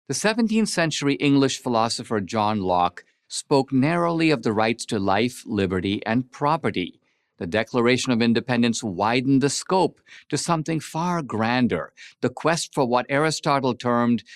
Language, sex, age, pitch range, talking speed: English, male, 50-69, 110-140 Hz, 140 wpm